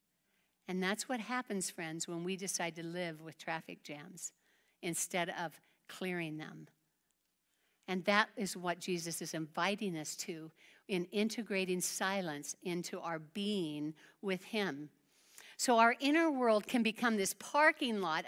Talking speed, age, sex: 140 wpm, 60-79, female